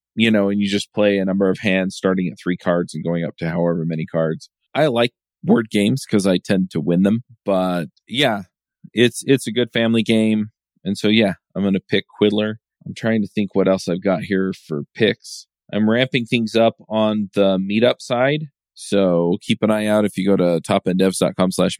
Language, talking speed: English, 210 wpm